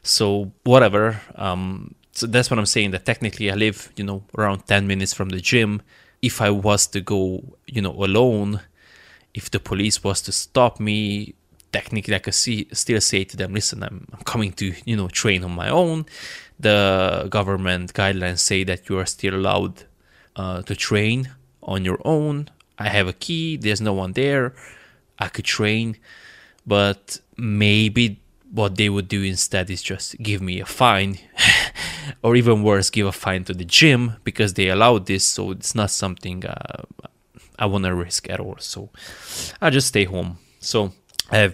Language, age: English, 20-39